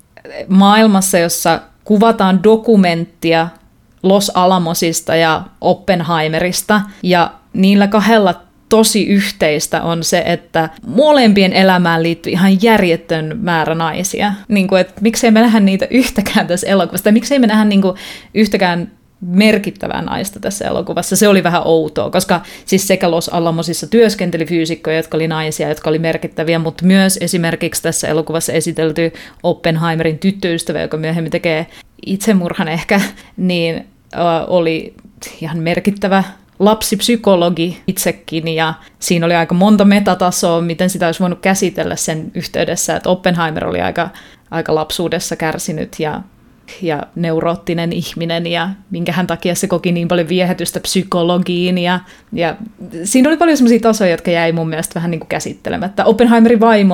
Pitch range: 165-195 Hz